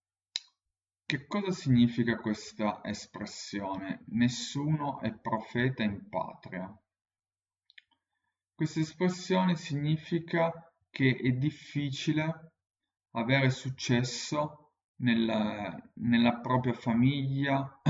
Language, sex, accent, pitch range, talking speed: Italian, male, native, 105-135 Hz, 75 wpm